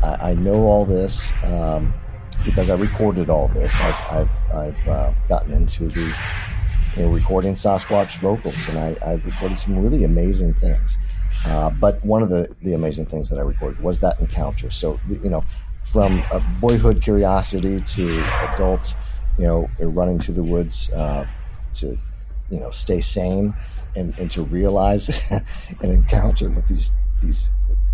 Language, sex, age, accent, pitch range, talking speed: English, male, 50-69, American, 75-100 Hz, 155 wpm